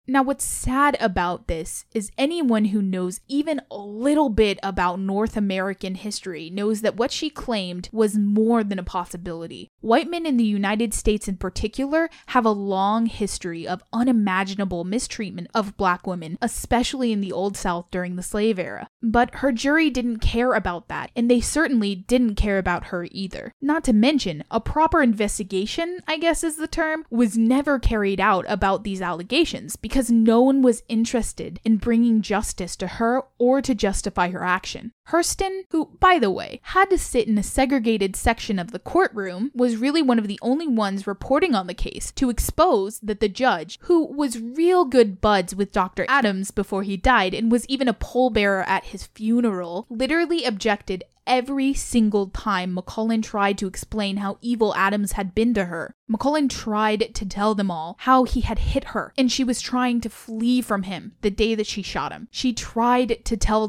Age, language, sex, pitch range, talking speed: 10-29, English, female, 195-255 Hz, 185 wpm